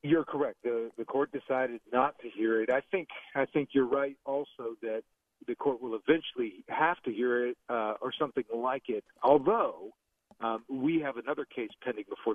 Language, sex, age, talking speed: English, male, 40-59, 190 wpm